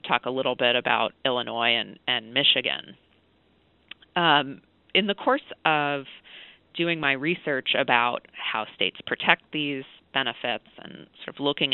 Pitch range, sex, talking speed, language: 125-160 Hz, female, 140 wpm, English